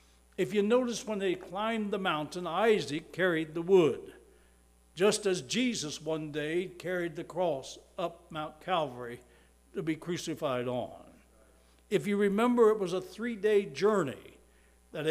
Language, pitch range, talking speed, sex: English, 155-200 Hz, 145 wpm, male